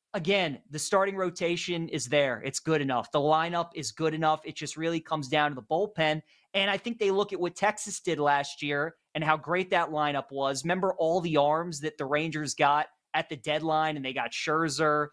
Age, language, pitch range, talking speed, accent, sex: 30-49, English, 150-185 Hz, 215 wpm, American, male